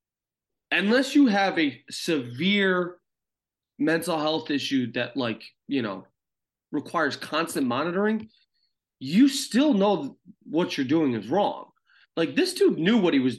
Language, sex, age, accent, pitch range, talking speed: English, male, 30-49, American, 135-215 Hz, 135 wpm